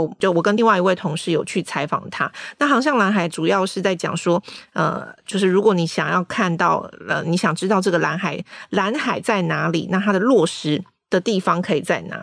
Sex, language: female, Chinese